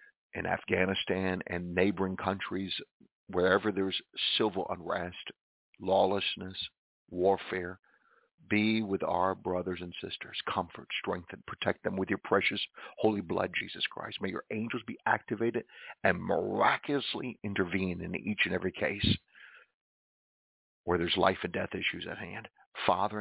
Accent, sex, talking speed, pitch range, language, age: American, male, 130 wpm, 95-110 Hz, English, 50-69